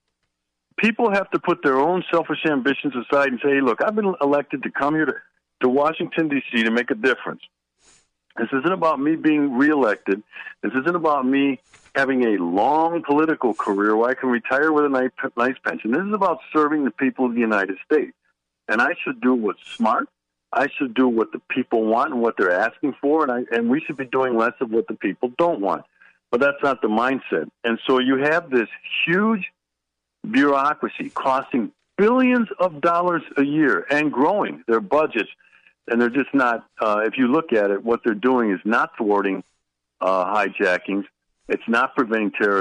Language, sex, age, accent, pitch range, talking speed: English, male, 60-79, American, 110-155 Hz, 190 wpm